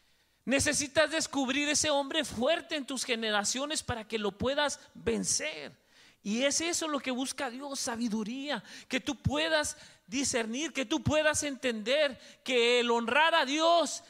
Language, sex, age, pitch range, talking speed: Spanish, male, 30-49, 230-300 Hz, 145 wpm